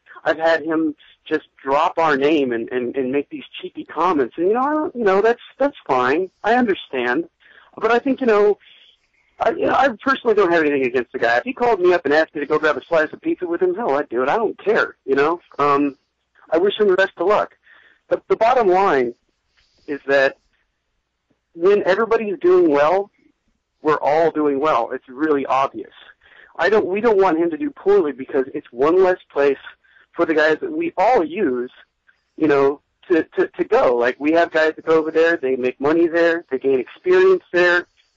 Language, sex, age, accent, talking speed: English, male, 50-69, American, 215 wpm